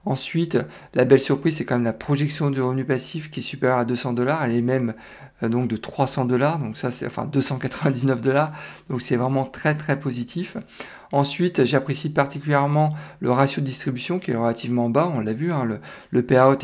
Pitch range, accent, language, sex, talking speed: 125-150 Hz, French, French, male, 200 wpm